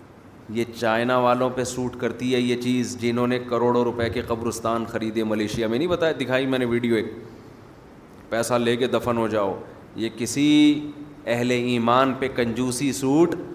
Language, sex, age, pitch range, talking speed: Urdu, male, 30-49, 120-140 Hz, 170 wpm